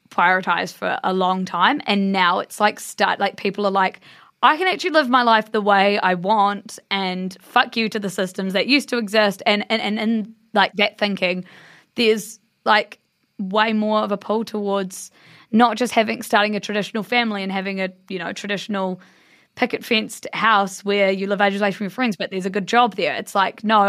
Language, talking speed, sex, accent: English, 205 wpm, female, Australian